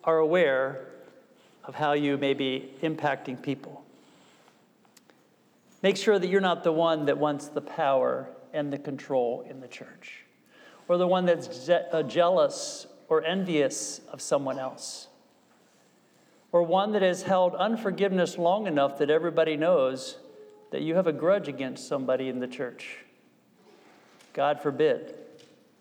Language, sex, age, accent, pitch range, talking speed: English, male, 50-69, American, 145-185 Hz, 135 wpm